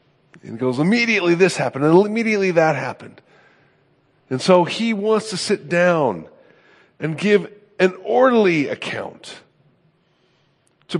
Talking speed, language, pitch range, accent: 125 wpm, English, 155-210 Hz, American